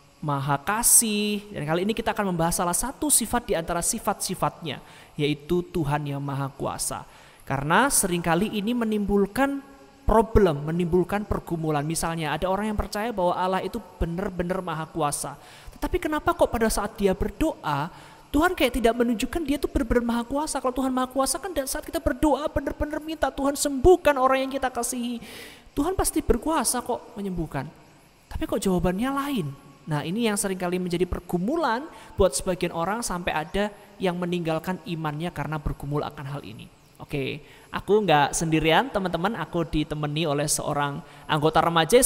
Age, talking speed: 30-49, 155 wpm